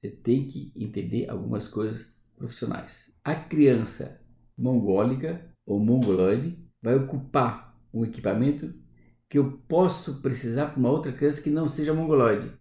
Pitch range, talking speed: 115-150 Hz, 135 wpm